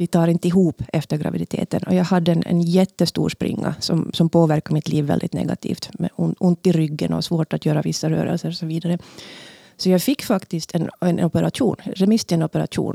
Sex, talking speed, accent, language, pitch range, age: female, 200 wpm, native, Swedish, 165-200 Hz, 30-49